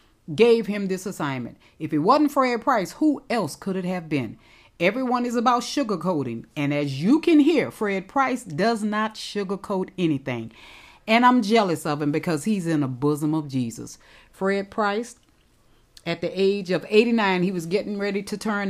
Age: 40-59